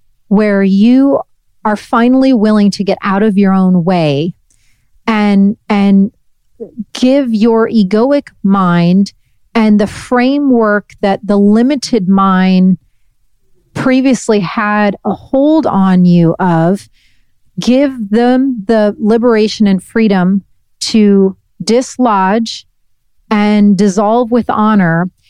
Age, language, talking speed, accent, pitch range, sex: 40-59, English, 105 wpm, American, 190-230 Hz, female